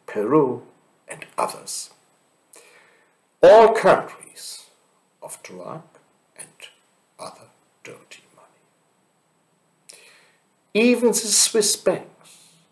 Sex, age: male, 60-79